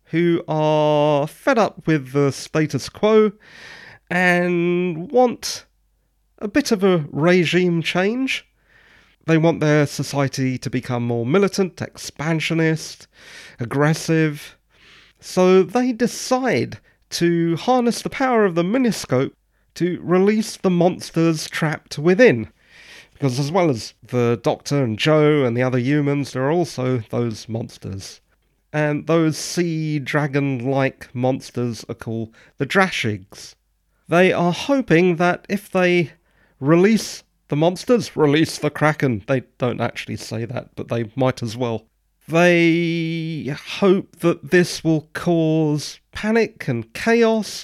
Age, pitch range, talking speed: 30-49, 135-190 Hz, 125 wpm